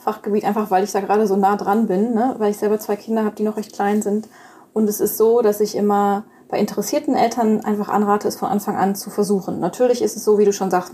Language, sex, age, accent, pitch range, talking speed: German, female, 20-39, German, 200-225 Hz, 265 wpm